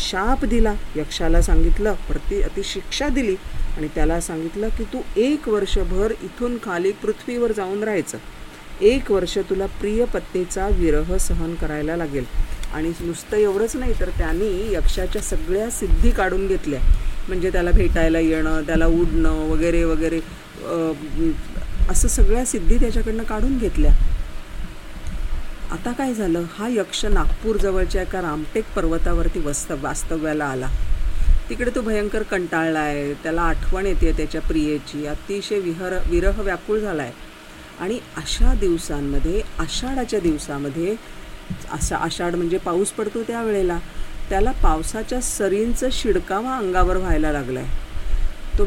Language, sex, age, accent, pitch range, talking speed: Marathi, female, 40-59, native, 155-210 Hz, 120 wpm